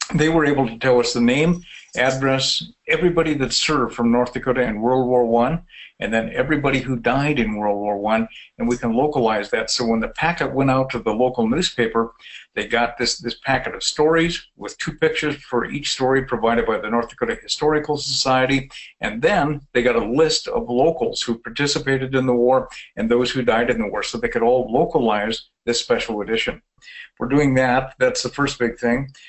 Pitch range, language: 120-145 Hz, English